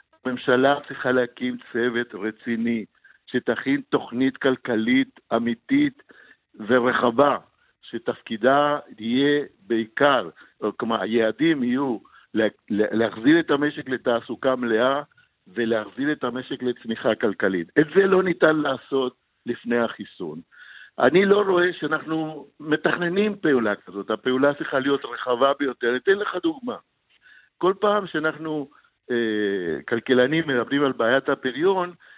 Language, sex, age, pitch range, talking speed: Hebrew, male, 60-79, 125-185 Hz, 110 wpm